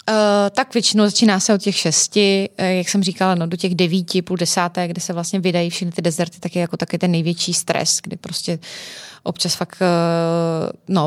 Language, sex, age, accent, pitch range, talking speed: Czech, female, 20-39, native, 175-195 Hz, 185 wpm